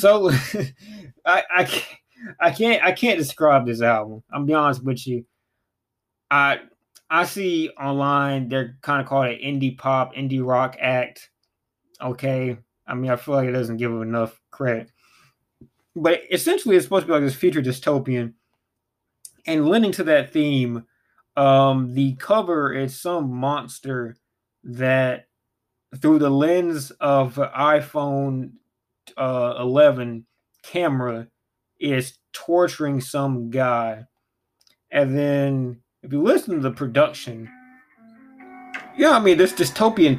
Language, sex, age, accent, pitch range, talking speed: English, male, 20-39, American, 120-155 Hz, 130 wpm